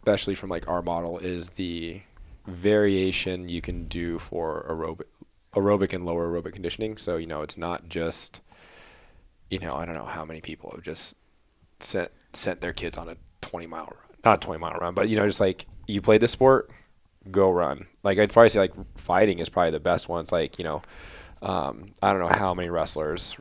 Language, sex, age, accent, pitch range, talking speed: English, male, 20-39, American, 80-95 Hz, 205 wpm